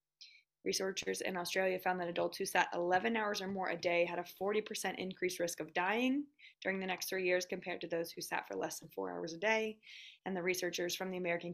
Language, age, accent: English, 20-39, American